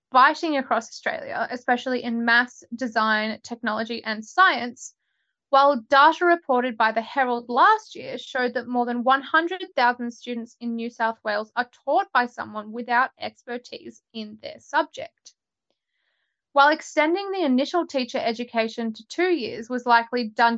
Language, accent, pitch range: English, Australian, 230-285 Hz